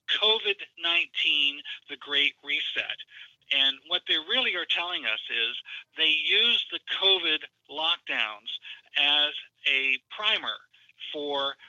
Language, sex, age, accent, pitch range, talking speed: English, male, 50-69, American, 135-165 Hz, 110 wpm